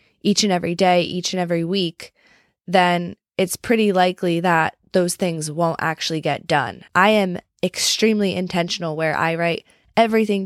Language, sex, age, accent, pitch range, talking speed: English, female, 20-39, American, 160-185 Hz, 155 wpm